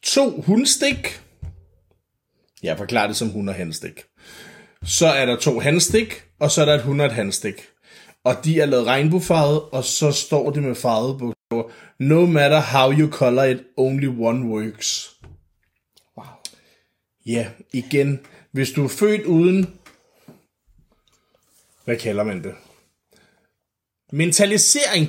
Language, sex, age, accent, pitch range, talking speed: Danish, male, 20-39, native, 115-160 Hz, 125 wpm